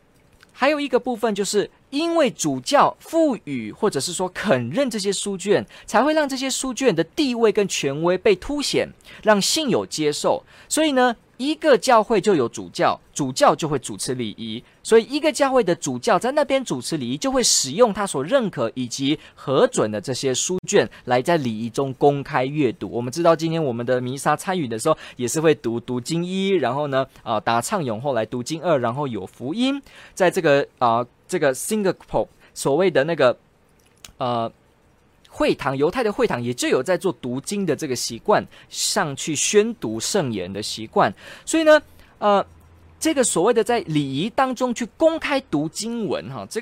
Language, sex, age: Chinese, male, 20-39